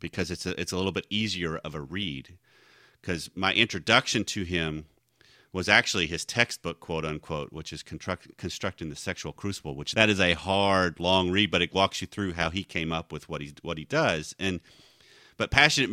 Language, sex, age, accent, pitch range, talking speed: English, male, 30-49, American, 85-100 Hz, 200 wpm